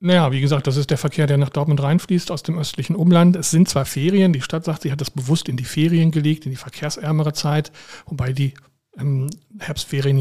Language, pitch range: German, 140-155 Hz